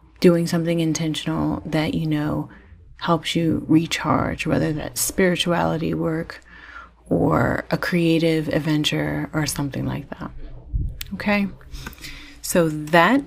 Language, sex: English, female